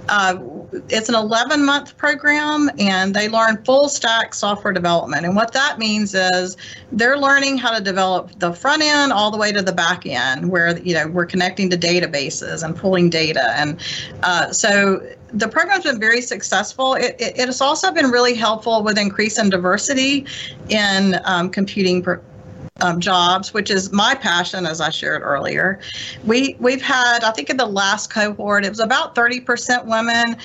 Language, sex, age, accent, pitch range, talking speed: English, female, 40-59, American, 185-240 Hz, 170 wpm